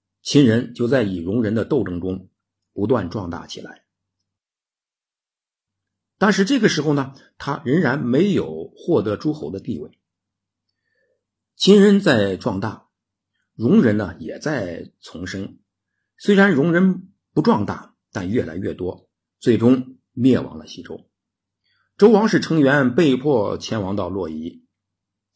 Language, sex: Chinese, male